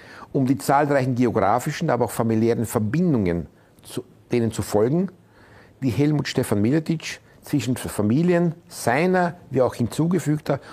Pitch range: 110-150 Hz